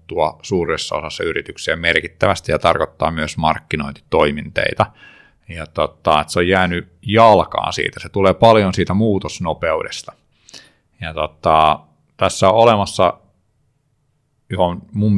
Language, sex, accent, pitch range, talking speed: Finnish, male, native, 80-100 Hz, 105 wpm